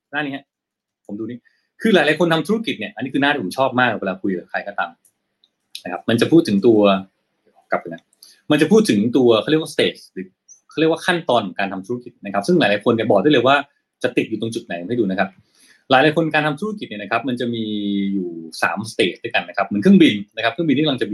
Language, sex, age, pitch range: Thai, male, 20-39, 120-170 Hz